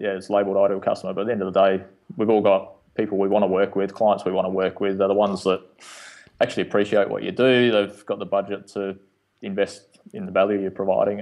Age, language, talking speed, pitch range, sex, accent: 20-39, English, 250 wpm, 95-105 Hz, male, Australian